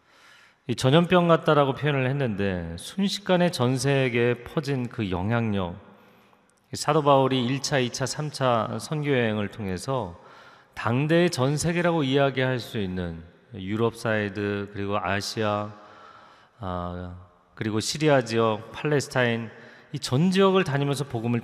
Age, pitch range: 30-49, 100-140 Hz